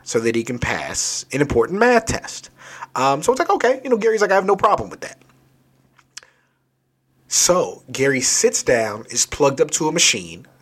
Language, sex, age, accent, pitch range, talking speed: English, male, 30-49, American, 115-150 Hz, 190 wpm